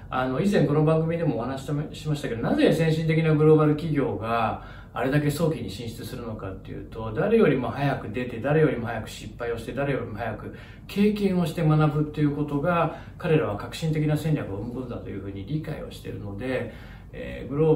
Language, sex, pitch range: Japanese, male, 115-155 Hz